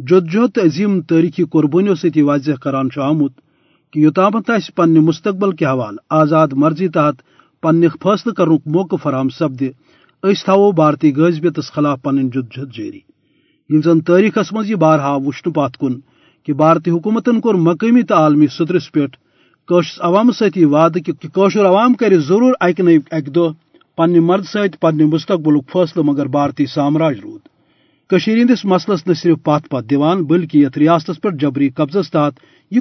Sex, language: male, Urdu